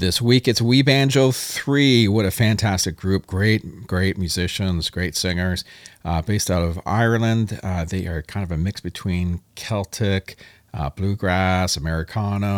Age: 40-59